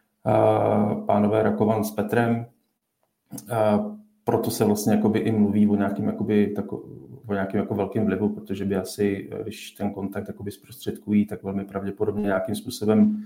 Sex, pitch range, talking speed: male, 105-110 Hz, 120 wpm